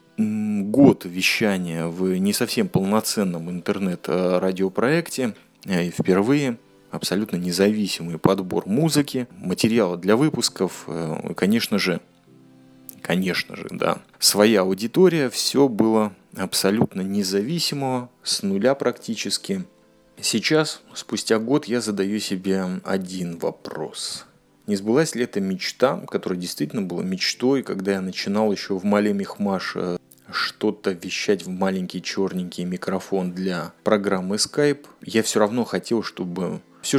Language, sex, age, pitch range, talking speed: Russian, male, 20-39, 95-125 Hz, 110 wpm